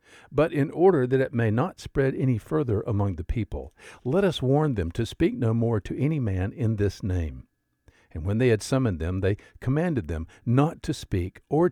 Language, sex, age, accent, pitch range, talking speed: English, male, 60-79, American, 95-135 Hz, 205 wpm